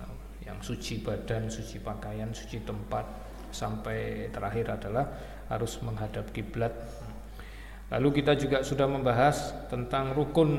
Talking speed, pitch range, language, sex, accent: 110 wpm, 110-135 Hz, Indonesian, male, native